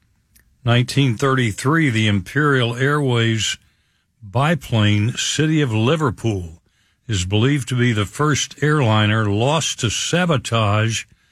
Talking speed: 95 wpm